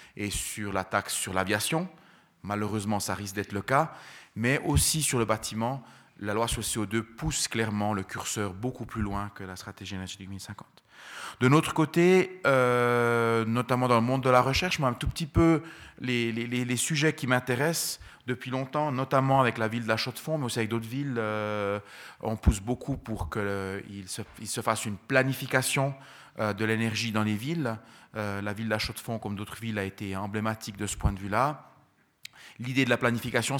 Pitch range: 105-135 Hz